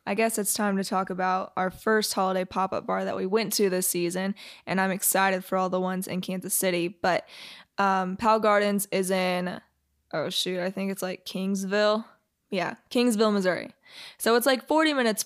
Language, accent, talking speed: English, American, 195 wpm